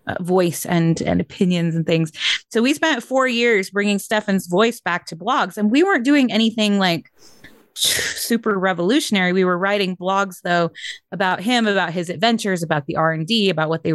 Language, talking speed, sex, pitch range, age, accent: English, 190 wpm, female, 170-210 Hz, 20-39, American